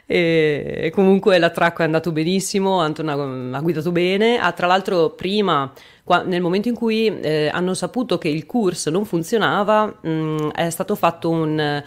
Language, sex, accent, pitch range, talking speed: Italian, female, native, 155-200 Hz, 150 wpm